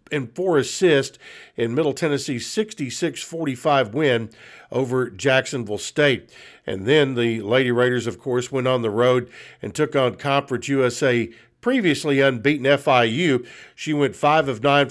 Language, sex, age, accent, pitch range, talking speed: English, male, 50-69, American, 125-150 Hz, 140 wpm